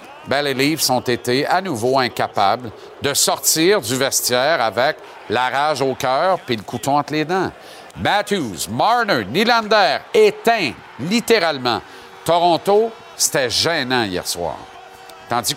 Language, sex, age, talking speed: French, male, 50-69, 130 wpm